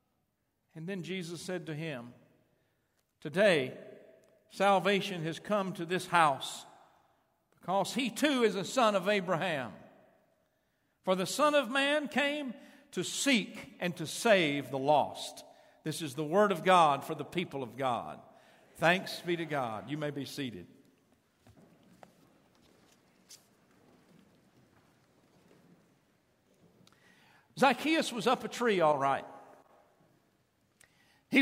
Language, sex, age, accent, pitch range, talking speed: English, male, 60-79, American, 170-230 Hz, 115 wpm